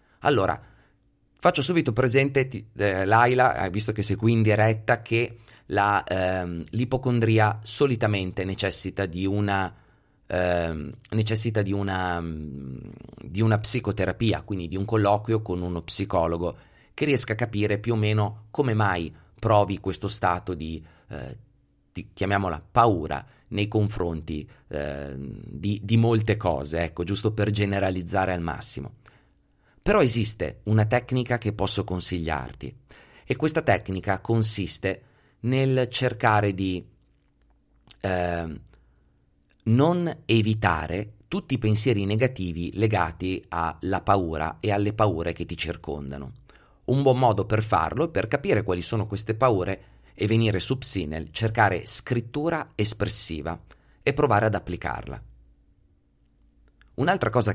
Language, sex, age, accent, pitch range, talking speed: Italian, male, 30-49, native, 90-115 Hz, 125 wpm